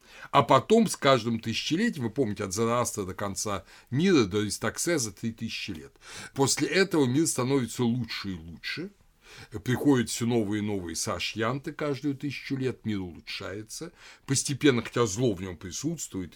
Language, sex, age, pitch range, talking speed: Russian, male, 60-79, 110-150 Hz, 155 wpm